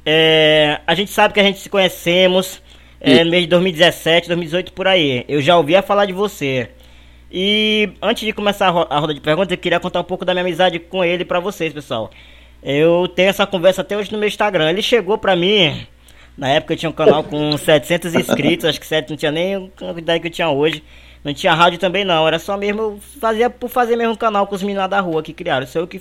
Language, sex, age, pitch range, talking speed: Portuguese, male, 20-39, 155-200 Hz, 240 wpm